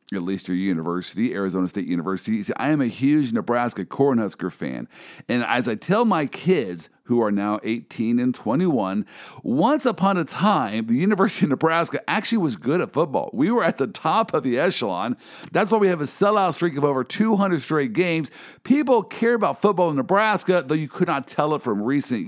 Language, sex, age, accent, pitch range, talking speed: English, male, 50-69, American, 120-195 Hz, 200 wpm